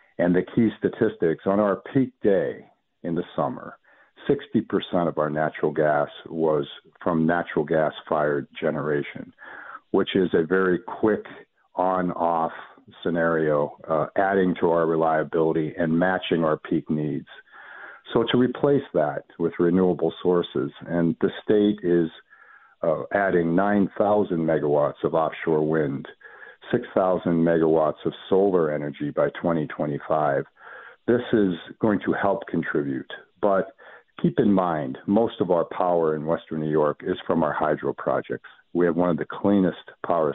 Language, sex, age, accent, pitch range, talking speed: English, male, 50-69, American, 80-90 Hz, 140 wpm